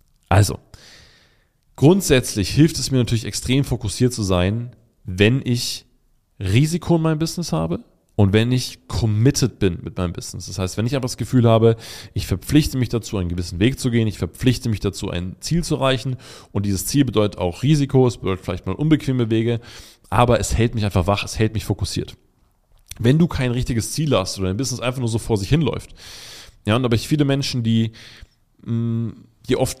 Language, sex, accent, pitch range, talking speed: German, male, German, 105-135 Hz, 195 wpm